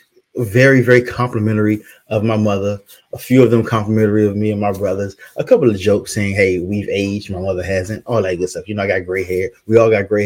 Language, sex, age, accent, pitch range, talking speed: English, male, 30-49, American, 100-120 Hz, 240 wpm